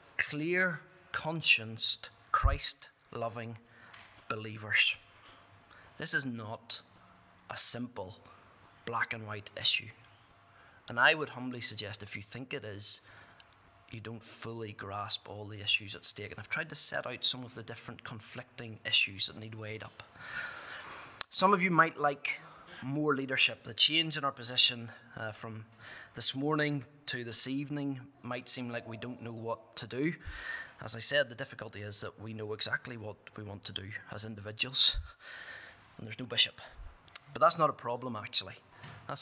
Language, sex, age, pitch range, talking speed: English, male, 20-39, 110-125 Hz, 160 wpm